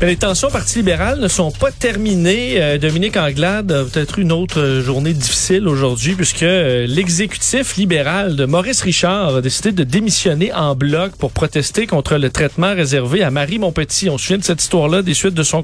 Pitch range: 145-185 Hz